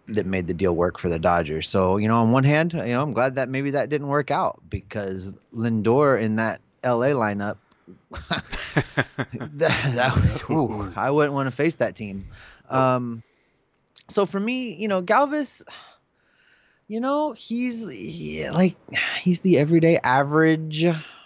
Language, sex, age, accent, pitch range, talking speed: English, male, 30-49, American, 105-145 Hz, 160 wpm